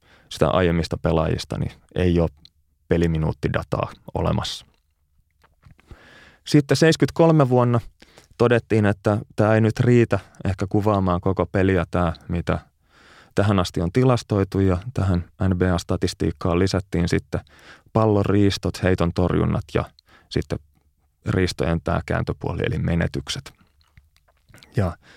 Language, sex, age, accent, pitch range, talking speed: Finnish, male, 30-49, native, 85-105 Hz, 100 wpm